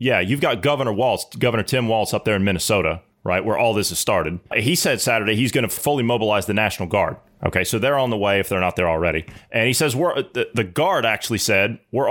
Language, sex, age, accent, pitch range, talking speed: English, male, 30-49, American, 105-130 Hz, 250 wpm